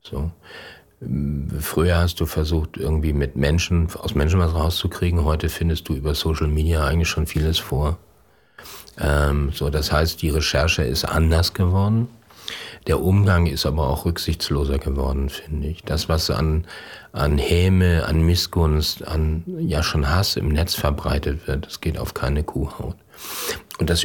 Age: 40-59